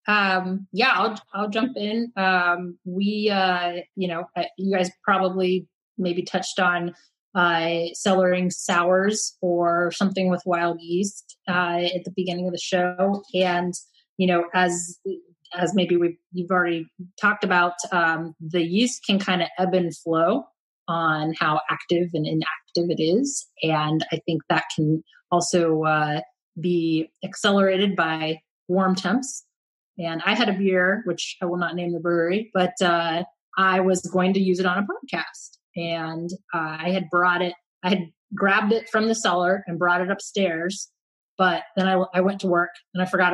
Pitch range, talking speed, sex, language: 170-195 Hz, 170 wpm, female, English